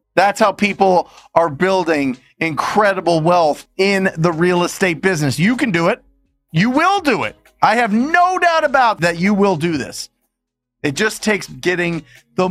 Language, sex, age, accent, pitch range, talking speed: English, male, 30-49, American, 140-195 Hz, 170 wpm